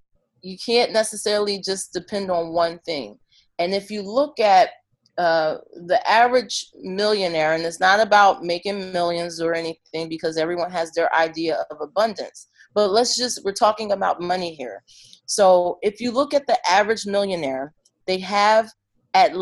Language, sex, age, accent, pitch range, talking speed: English, female, 30-49, American, 170-225 Hz, 160 wpm